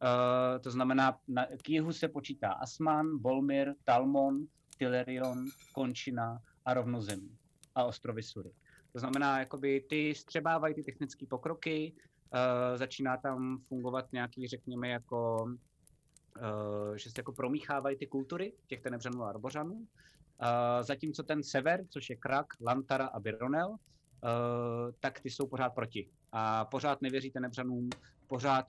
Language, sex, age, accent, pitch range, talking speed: Czech, male, 30-49, native, 120-135 Hz, 130 wpm